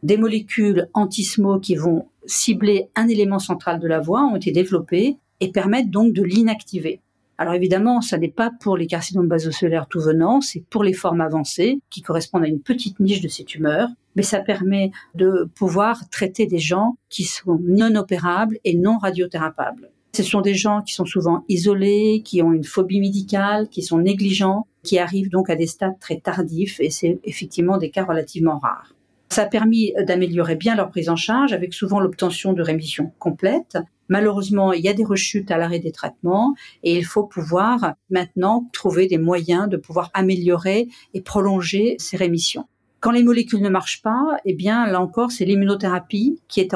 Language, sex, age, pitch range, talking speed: French, female, 50-69, 175-210 Hz, 185 wpm